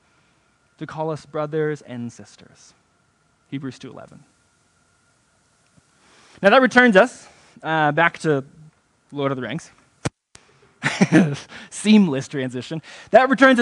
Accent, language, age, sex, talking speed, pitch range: American, English, 20-39, male, 100 wpm, 140-190 Hz